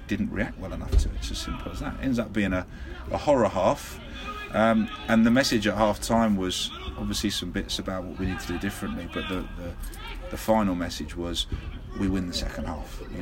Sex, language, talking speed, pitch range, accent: male, English, 220 wpm, 90-105 Hz, British